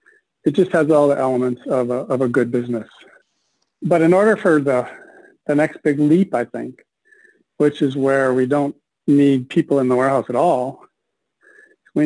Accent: American